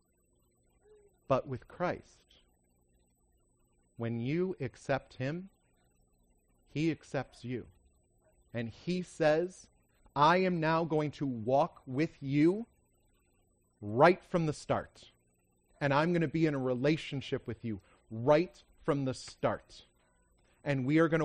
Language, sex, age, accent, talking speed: English, male, 40-59, American, 120 wpm